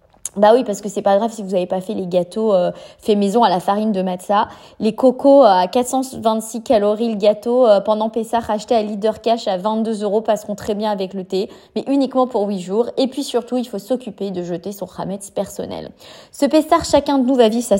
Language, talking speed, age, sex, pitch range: French, 235 wpm, 20-39, female, 195-235 Hz